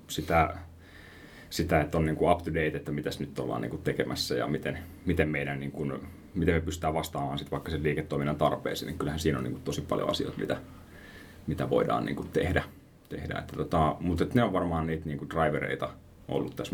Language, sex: Finnish, male